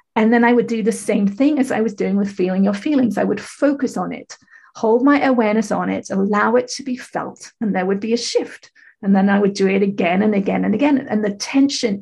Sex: female